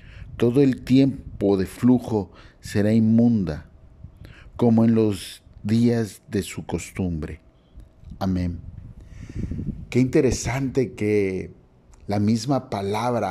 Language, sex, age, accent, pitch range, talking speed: Spanish, male, 50-69, Mexican, 95-125 Hz, 95 wpm